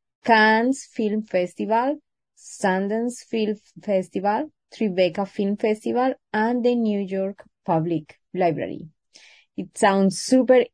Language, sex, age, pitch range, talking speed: English, female, 20-39, 185-240 Hz, 100 wpm